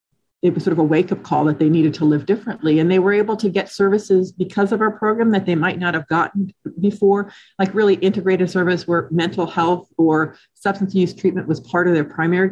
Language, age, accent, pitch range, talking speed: English, 40-59, American, 165-190 Hz, 225 wpm